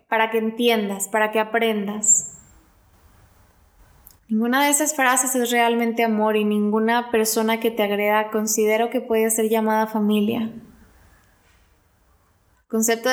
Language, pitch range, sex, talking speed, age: Spanish, 210-245 Hz, female, 125 wpm, 10-29